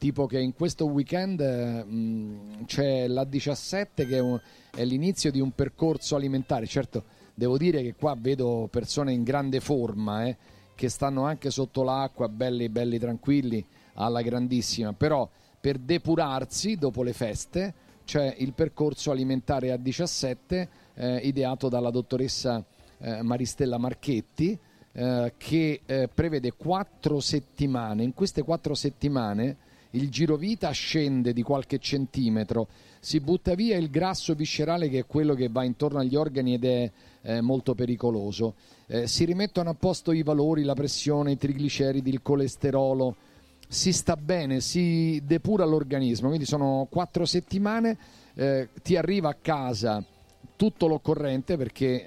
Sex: male